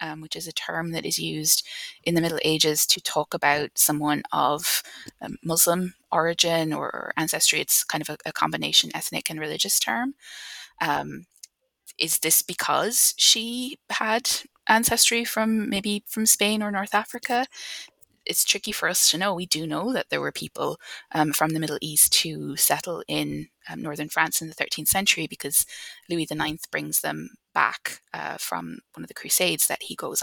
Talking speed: 175 wpm